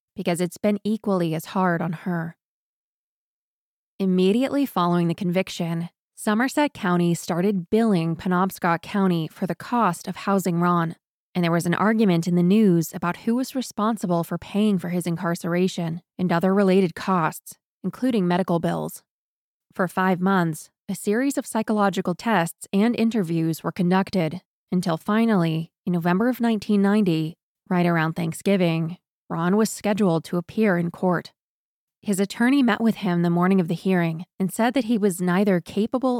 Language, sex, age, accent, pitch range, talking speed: English, female, 20-39, American, 170-205 Hz, 155 wpm